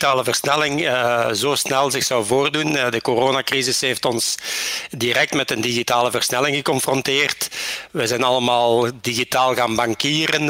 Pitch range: 120-135 Hz